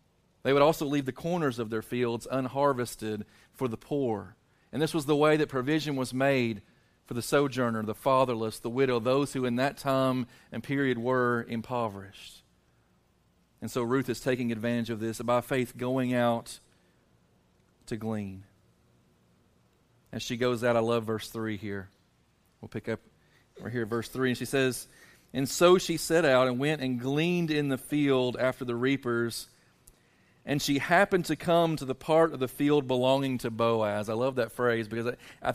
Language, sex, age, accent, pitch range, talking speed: English, male, 40-59, American, 115-140 Hz, 180 wpm